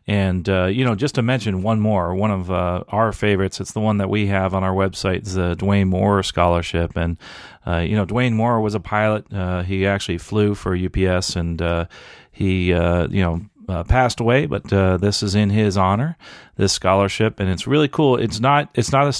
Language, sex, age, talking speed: English, male, 40-59, 210 wpm